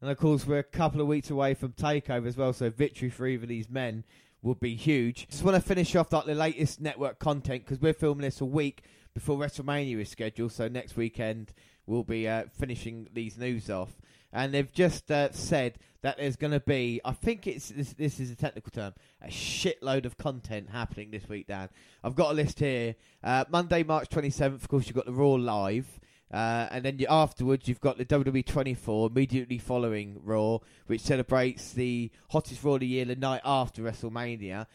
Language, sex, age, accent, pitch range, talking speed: English, male, 20-39, British, 115-140 Hz, 205 wpm